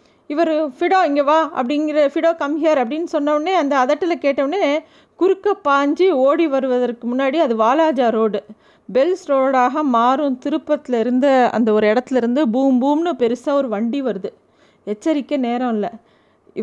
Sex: female